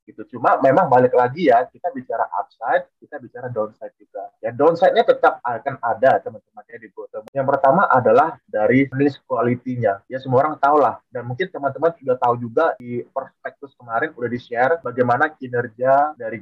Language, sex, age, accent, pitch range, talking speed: Indonesian, male, 20-39, native, 125-170 Hz, 160 wpm